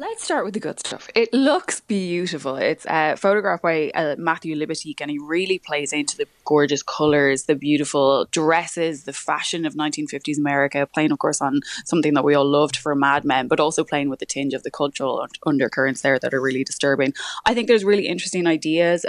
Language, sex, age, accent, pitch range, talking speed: English, female, 20-39, Irish, 145-180 Hz, 210 wpm